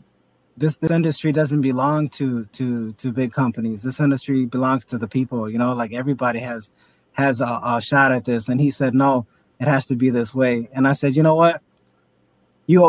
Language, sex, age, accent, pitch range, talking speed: English, male, 20-39, American, 125-145 Hz, 205 wpm